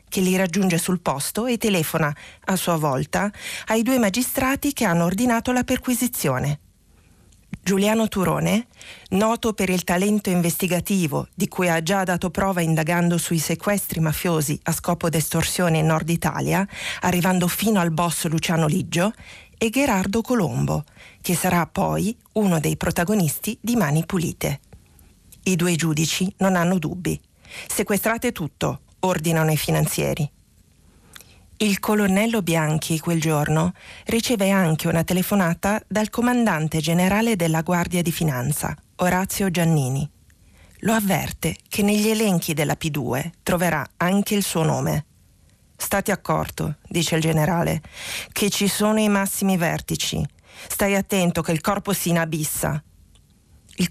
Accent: native